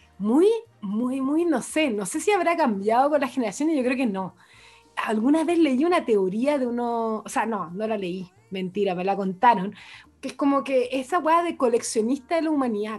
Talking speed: 210 wpm